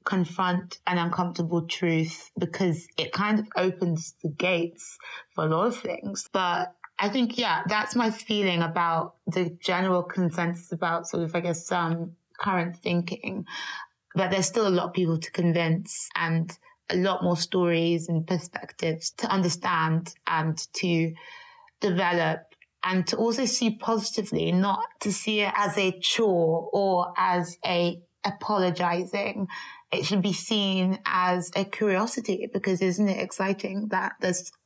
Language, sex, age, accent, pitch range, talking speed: English, female, 30-49, British, 175-200 Hz, 145 wpm